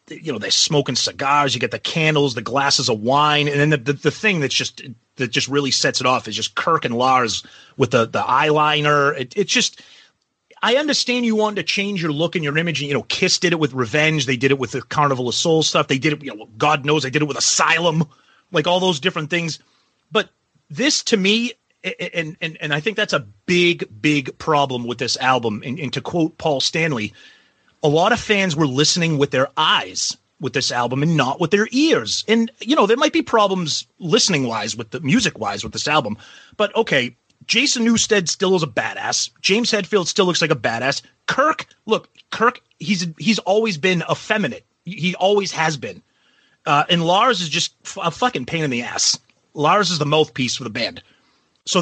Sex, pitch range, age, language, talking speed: male, 140-195 Hz, 30-49, English, 215 wpm